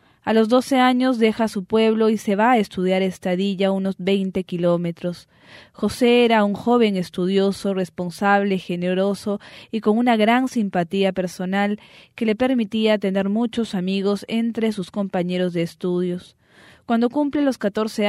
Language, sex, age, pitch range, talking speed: English, female, 20-39, 185-225 Hz, 145 wpm